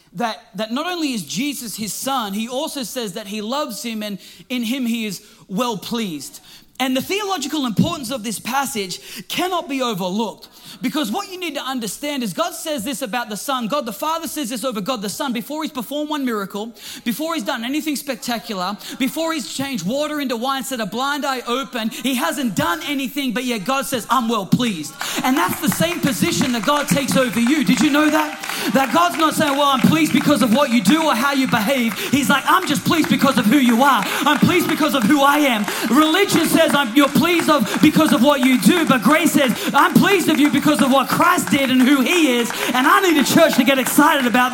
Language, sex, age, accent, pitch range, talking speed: English, male, 30-49, Australian, 230-295 Hz, 225 wpm